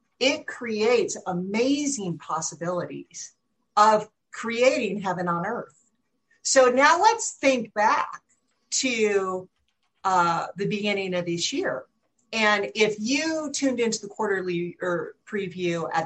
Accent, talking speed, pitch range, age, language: American, 115 wpm, 180-245 Hz, 50-69, English